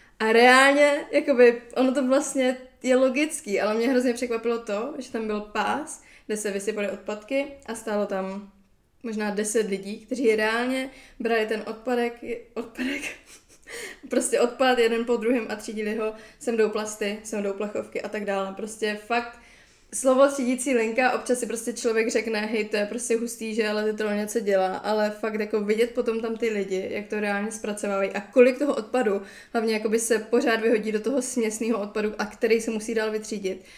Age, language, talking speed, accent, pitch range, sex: 20-39, Czech, 185 wpm, native, 215-245 Hz, female